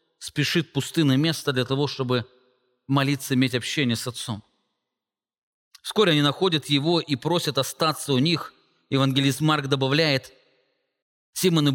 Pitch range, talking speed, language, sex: 140-185 Hz, 125 wpm, English, male